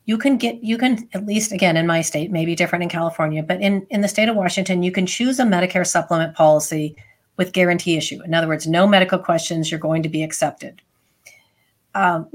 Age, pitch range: 40-59, 170-220 Hz